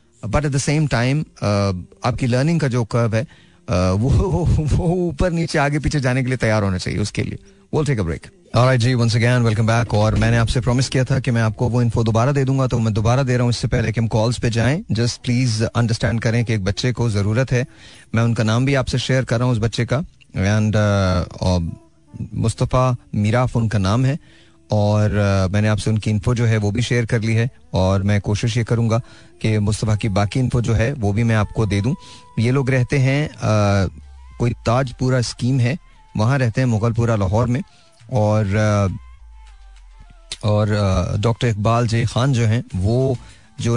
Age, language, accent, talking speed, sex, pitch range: 30-49, Hindi, native, 190 wpm, male, 105-125 Hz